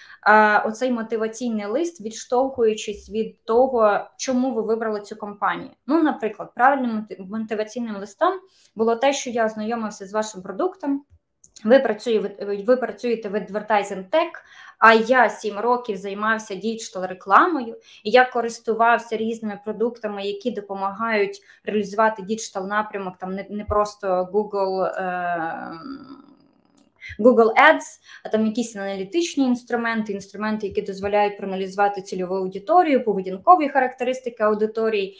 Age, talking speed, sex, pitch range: 20-39, 115 wpm, female, 205-250 Hz